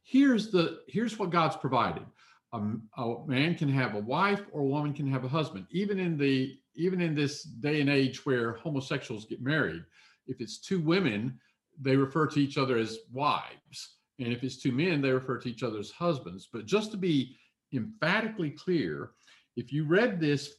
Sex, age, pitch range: male, 50-69, 130-170 Hz